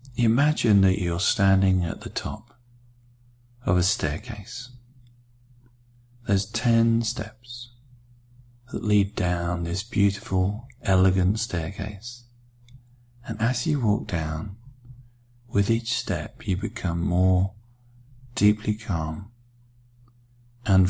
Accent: British